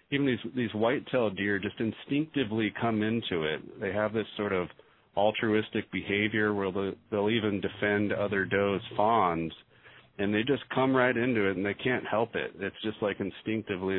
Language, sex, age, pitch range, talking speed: English, male, 40-59, 95-115 Hz, 175 wpm